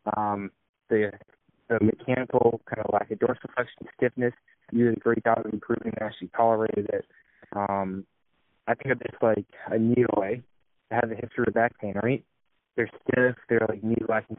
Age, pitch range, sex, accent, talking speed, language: 20-39, 110-125 Hz, male, American, 180 wpm, English